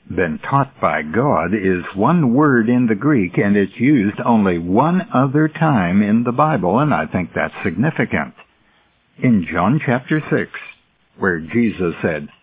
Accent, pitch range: American, 95-155 Hz